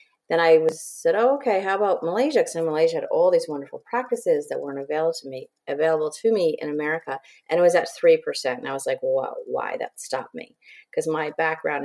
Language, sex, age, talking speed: English, female, 30-49, 225 wpm